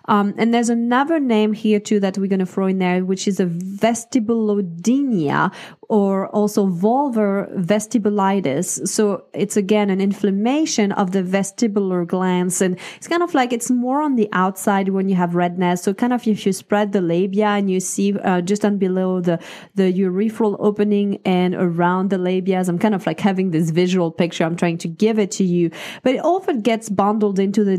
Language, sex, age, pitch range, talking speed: English, female, 30-49, 190-230 Hz, 195 wpm